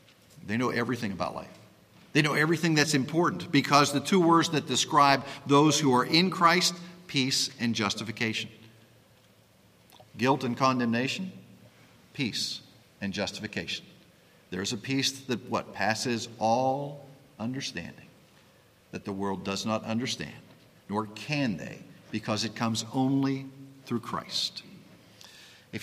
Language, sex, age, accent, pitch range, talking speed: English, male, 50-69, American, 115-150 Hz, 125 wpm